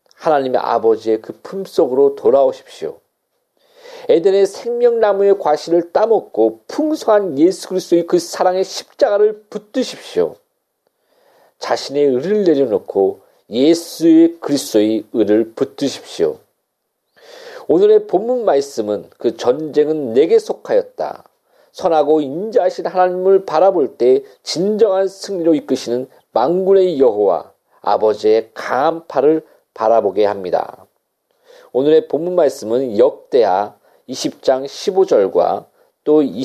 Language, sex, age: Korean, male, 40-59